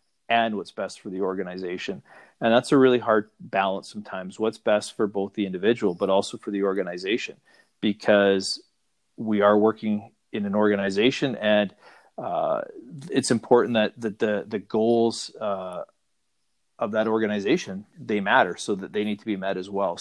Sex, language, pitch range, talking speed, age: male, English, 95-110 Hz, 165 wpm, 40-59